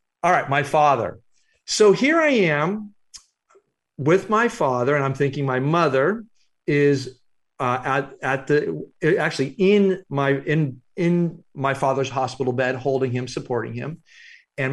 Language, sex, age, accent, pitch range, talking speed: English, male, 40-59, American, 125-170 Hz, 145 wpm